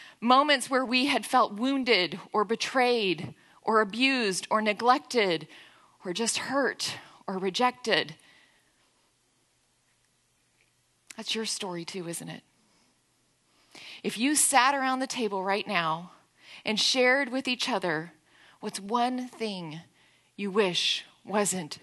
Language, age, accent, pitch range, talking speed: English, 30-49, American, 180-235 Hz, 115 wpm